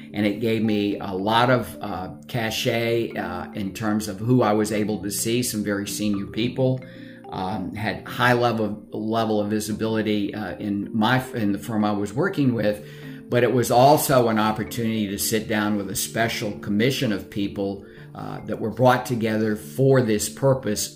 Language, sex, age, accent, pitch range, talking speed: English, male, 50-69, American, 105-115 Hz, 180 wpm